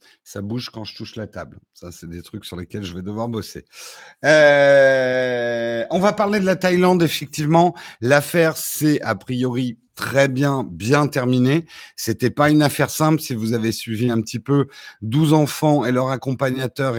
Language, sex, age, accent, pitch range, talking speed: French, male, 50-69, French, 110-145 Hz, 180 wpm